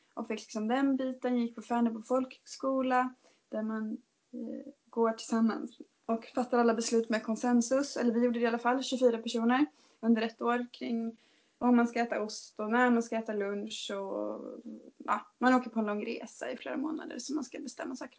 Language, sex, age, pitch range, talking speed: Swedish, female, 20-39, 230-275 Hz, 205 wpm